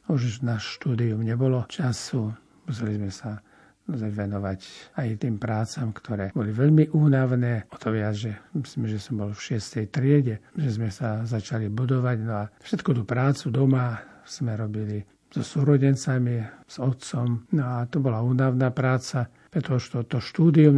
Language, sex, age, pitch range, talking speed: Slovak, male, 50-69, 115-135 Hz, 155 wpm